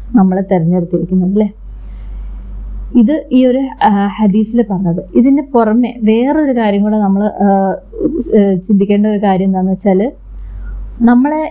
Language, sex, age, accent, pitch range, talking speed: Malayalam, female, 20-39, native, 215-255 Hz, 105 wpm